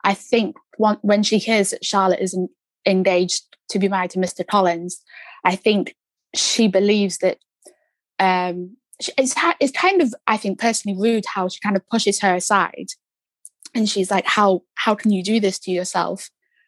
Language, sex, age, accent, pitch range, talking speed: English, female, 20-39, British, 195-225 Hz, 170 wpm